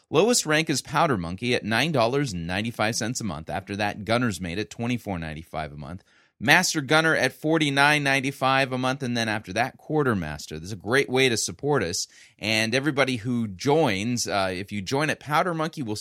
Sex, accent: male, American